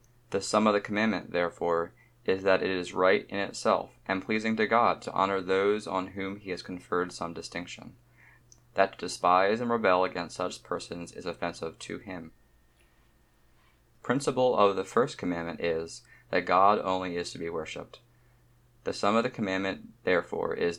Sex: male